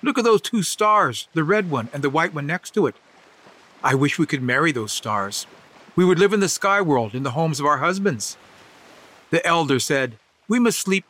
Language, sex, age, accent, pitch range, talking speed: English, male, 50-69, American, 135-175 Hz, 220 wpm